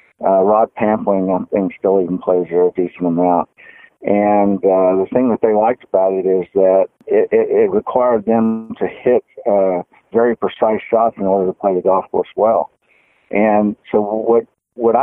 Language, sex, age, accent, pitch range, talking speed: English, male, 50-69, American, 95-115 Hz, 180 wpm